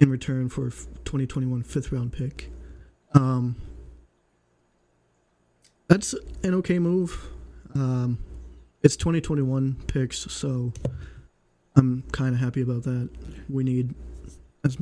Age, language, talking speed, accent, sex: 20-39, English, 100 wpm, American, male